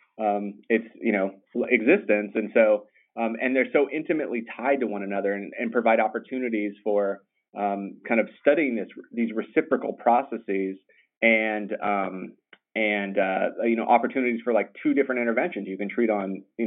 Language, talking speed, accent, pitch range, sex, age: English, 165 wpm, American, 105-125 Hz, male, 30-49